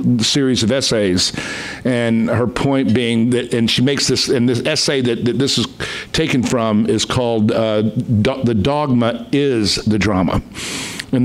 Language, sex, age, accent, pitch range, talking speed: English, male, 50-69, American, 115-145 Hz, 165 wpm